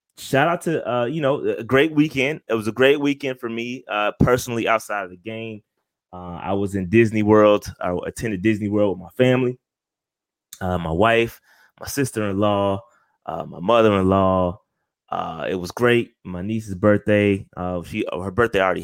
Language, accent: English, American